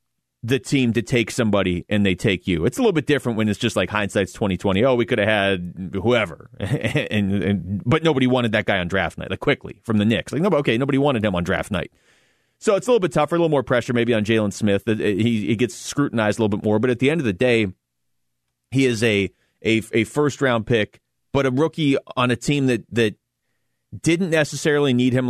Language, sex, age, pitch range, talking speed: English, male, 30-49, 105-140 Hz, 235 wpm